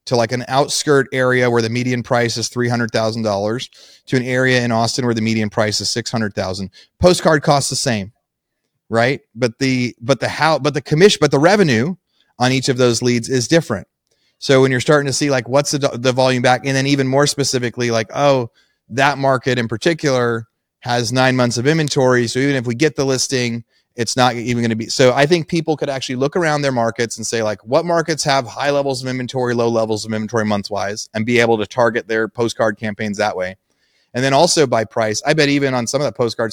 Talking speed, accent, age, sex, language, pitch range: 230 wpm, American, 30-49, male, English, 110-135 Hz